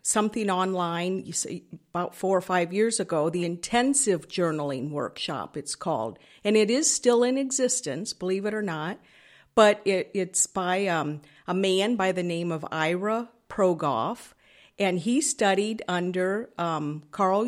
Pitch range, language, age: 165-205 Hz, English, 50-69